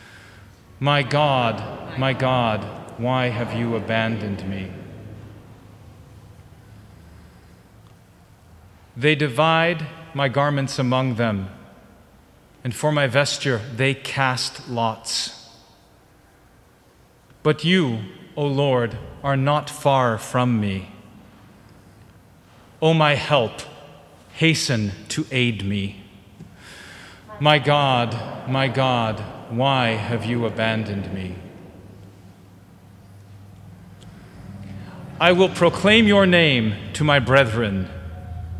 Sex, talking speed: male, 85 wpm